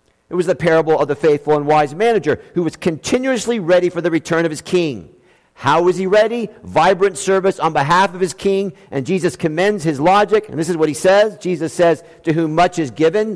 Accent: American